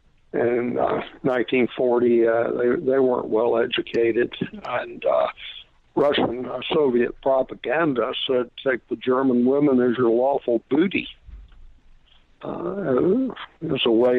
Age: 60-79